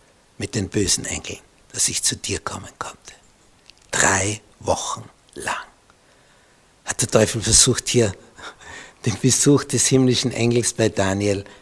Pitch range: 110-145 Hz